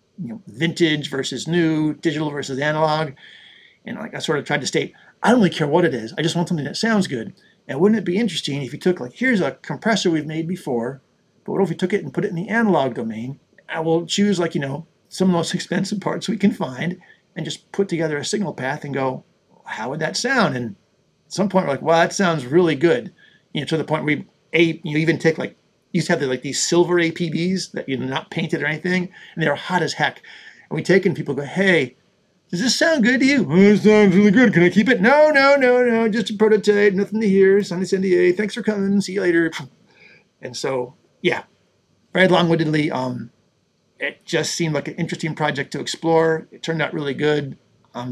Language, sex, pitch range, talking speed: English, male, 145-195 Hz, 240 wpm